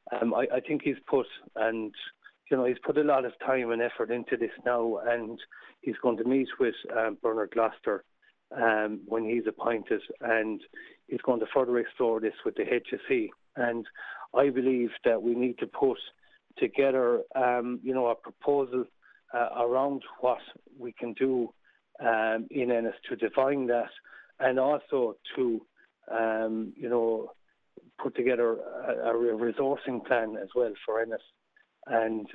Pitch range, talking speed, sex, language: 115-135 Hz, 160 wpm, male, English